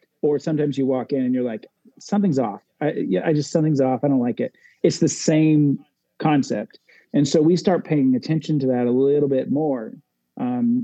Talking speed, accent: 205 wpm, American